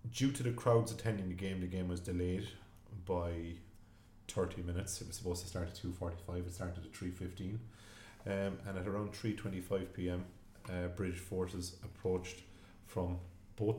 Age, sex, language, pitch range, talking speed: 30-49, male, English, 85-105 Hz, 175 wpm